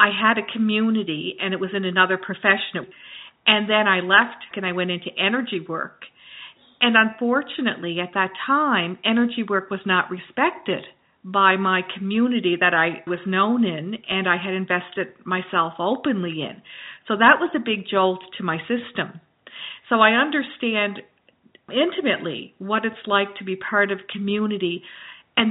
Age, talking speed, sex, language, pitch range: 50-69, 160 wpm, female, English, 190-220 Hz